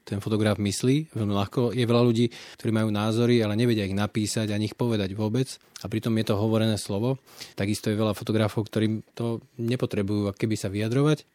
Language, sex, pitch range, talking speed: Slovak, male, 105-120 Hz, 190 wpm